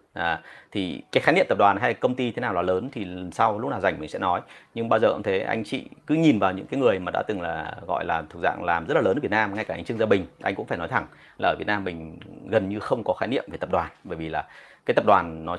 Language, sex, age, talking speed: Vietnamese, male, 30-49, 320 wpm